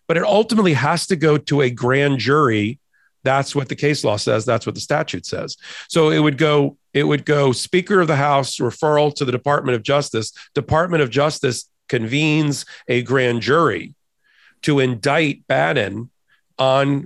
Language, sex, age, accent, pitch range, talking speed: English, male, 40-59, American, 120-150 Hz, 170 wpm